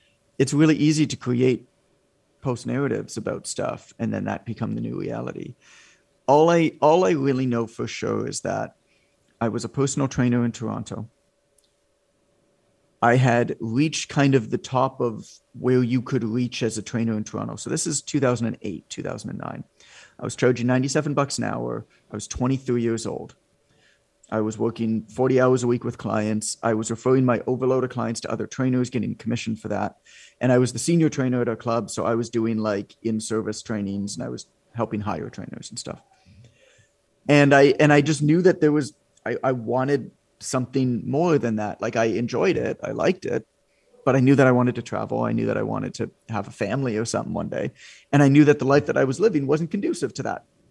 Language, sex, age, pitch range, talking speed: English, male, 40-59, 115-140 Hz, 200 wpm